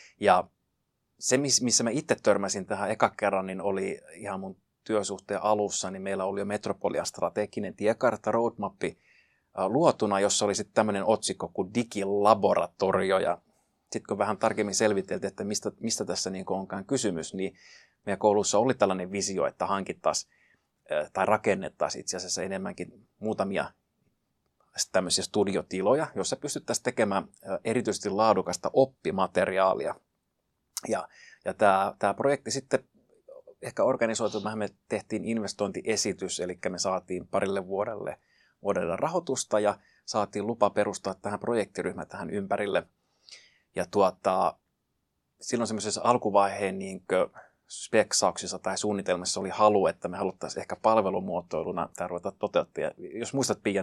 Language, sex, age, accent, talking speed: Finnish, male, 30-49, native, 120 wpm